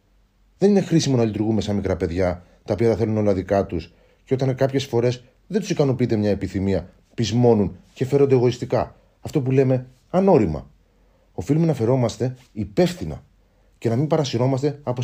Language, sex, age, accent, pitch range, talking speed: Greek, male, 30-49, native, 100-130 Hz, 160 wpm